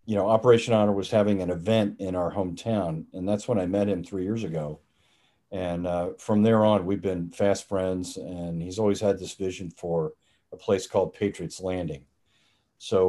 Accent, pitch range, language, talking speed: American, 90-110 Hz, English, 195 wpm